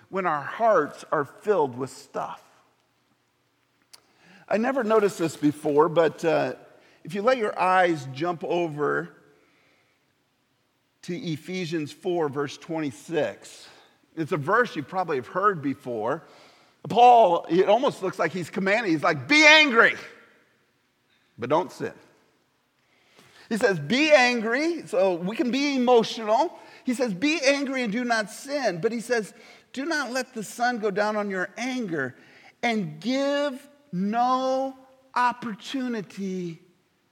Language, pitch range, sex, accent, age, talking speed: English, 175-245 Hz, male, American, 50-69, 135 wpm